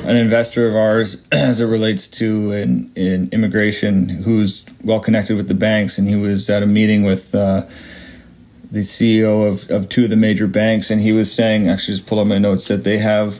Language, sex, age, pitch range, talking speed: English, male, 30-49, 100-115 Hz, 210 wpm